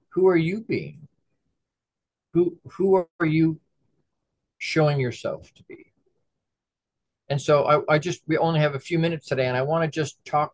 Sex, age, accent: male, 50-69, American